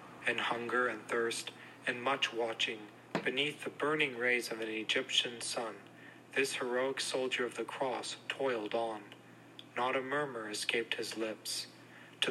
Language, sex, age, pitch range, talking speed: English, male, 40-59, 115-135 Hz, 145 wpm